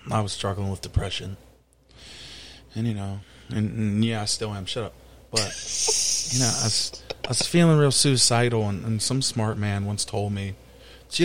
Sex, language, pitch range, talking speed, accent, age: male, English, 110-140 Hz, 180 wpm, American, 20-39